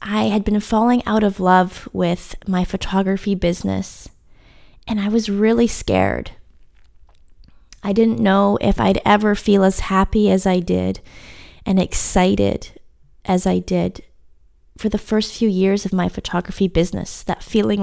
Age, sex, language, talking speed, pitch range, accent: 20-39, female, English, 150 wpm, 180-210 Hz, American